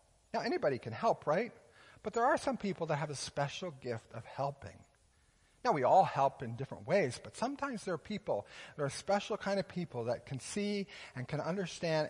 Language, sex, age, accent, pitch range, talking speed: English, male, 50-69, American, 155-215 Hz, 205 wpm